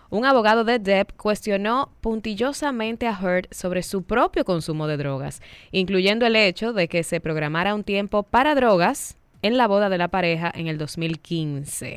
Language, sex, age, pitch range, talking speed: Spanish, female, 10-29, 160-220 Hz, 170 wpm